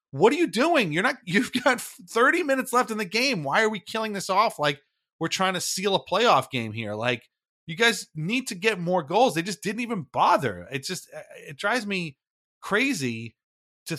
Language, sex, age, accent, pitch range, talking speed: English, male, 30-49, American, 125-185 Hz, 210 wpm